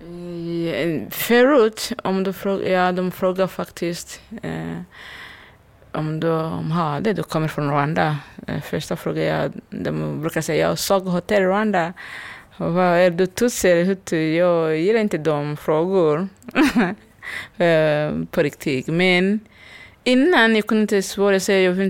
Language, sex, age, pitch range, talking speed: Swedish, female, 20-39, 160-200 Hz, 125 wpm